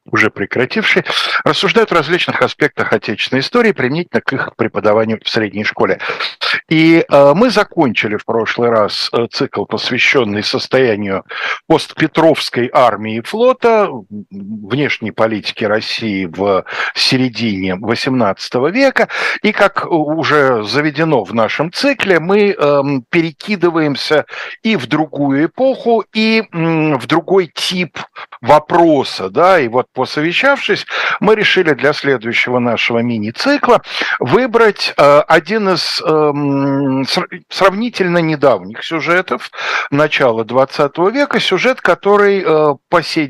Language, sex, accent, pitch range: Russian, male, native, 135-195 Hz